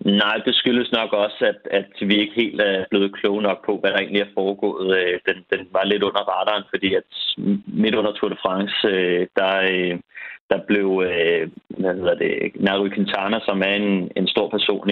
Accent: native